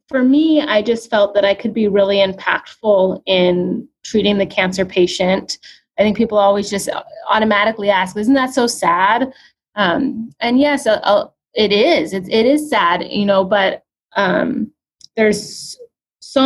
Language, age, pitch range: English, 20-39, 200-245 Hz